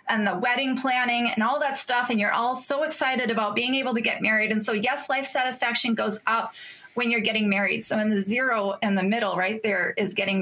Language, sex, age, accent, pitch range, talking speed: English, female, 20-39, American, 205-255 Hz, 235 wpm